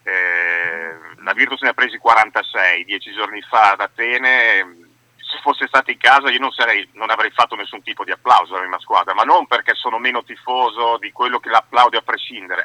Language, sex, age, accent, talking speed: Italian, male, 40-59, native, 195 wpm